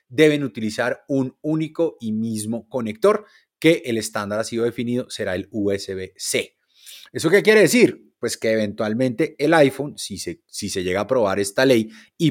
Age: 30-49